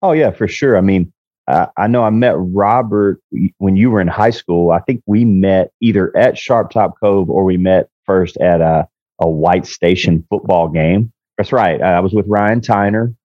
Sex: male